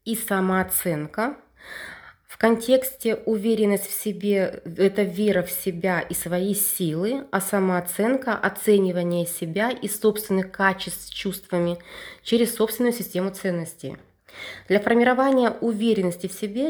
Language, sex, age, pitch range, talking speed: Russian, female, 20-39, 180-220 Hz, 115 wpm